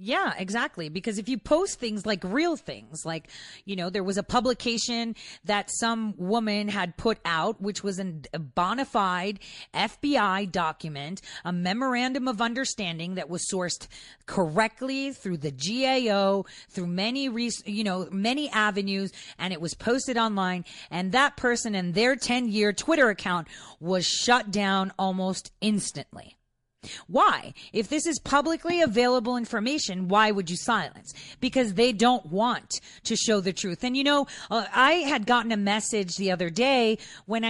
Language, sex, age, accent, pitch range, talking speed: English, female, 30-49, American, 190-250 Hz, 155 wpm